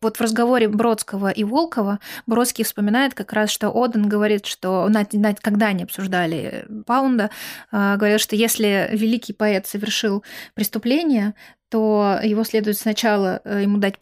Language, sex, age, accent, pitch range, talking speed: Russian, female, 20-39, native, 205-235 Hz, 145 wpm